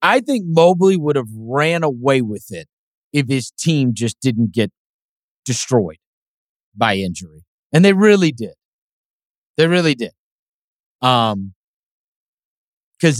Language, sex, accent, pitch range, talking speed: English, male, American, 130-175 Hz, 125 wpm